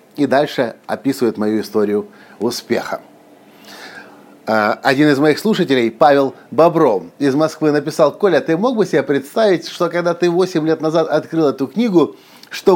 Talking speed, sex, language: 145 wpm, male, Russian